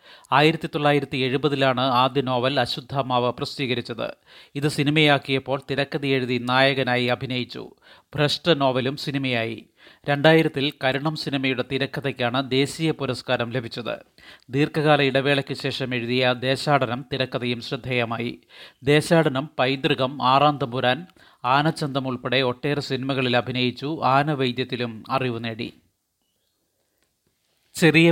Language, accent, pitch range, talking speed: Malayalam, native, 125-145 Hz, 90 wpm